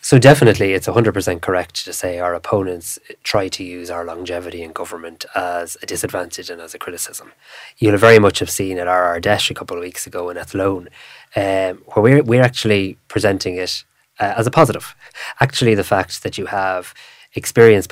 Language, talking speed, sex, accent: English, 195 wpm, male, Irish